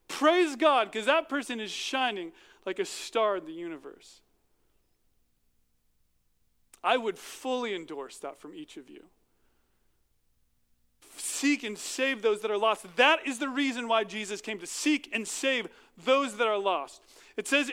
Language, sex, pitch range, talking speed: English, male, 200-295 Hz, 155 wpm